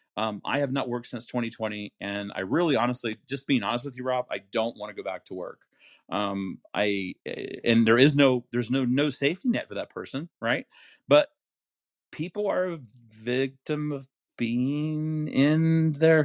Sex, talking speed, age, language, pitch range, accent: male, 180 wpm, 40-59, English, 110-140 Hz, American